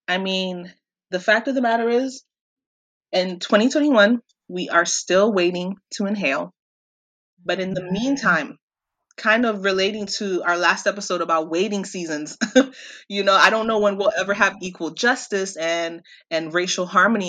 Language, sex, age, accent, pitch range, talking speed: English, female, 20-39, American, 175-215 Hz, 155 wpm